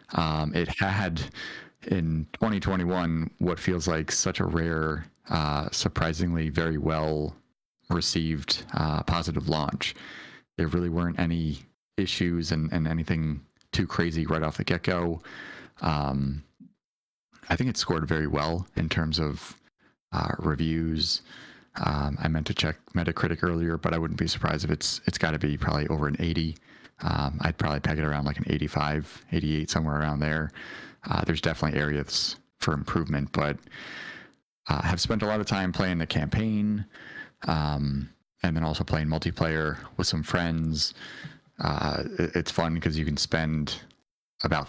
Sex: male